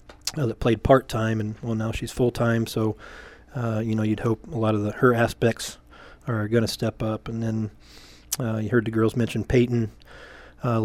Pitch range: 110-120 Hz